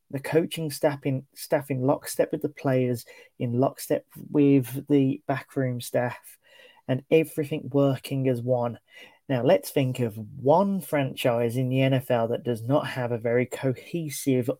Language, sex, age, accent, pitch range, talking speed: English, male, 30-49, British, 125-140 Hz, 150 wpm